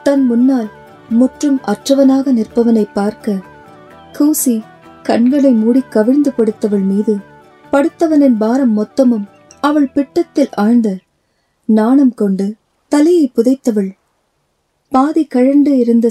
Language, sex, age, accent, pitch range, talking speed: Tamil, female, 30-49, native, 215-270 Hz, 95 wpm